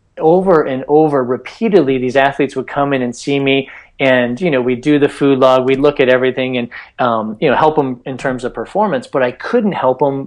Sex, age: male, 30-49